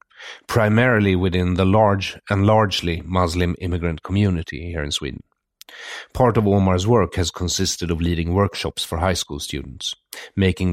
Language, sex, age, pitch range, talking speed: English, male, 40-59, 85-100 Hz, 145 wpm